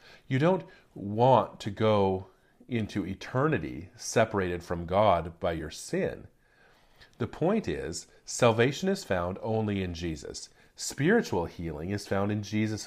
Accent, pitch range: American, 100-125 Hz